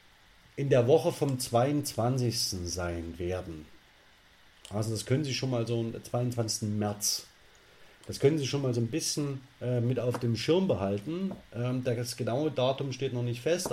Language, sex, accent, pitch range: German, male, German, 115-130 Hz